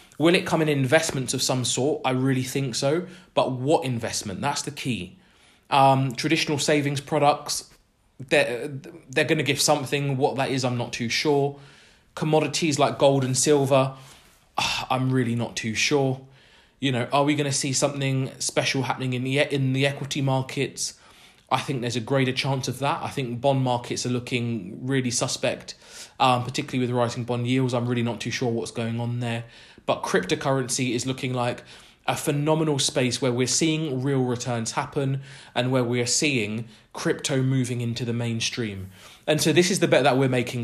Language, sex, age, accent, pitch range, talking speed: English, male, 20-39, British, 125-150 Hz, 180 wpm